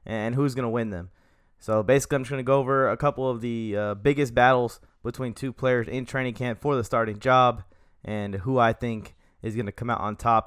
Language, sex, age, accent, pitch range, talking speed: English, male, 20-39, American, 110-145 Hz, 225 wpm